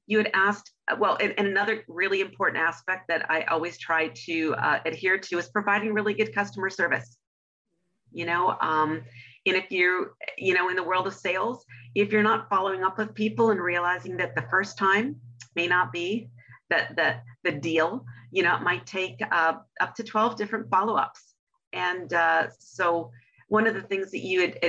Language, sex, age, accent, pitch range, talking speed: English, female, 40-59, American, 160-195 Hz, 185 wpm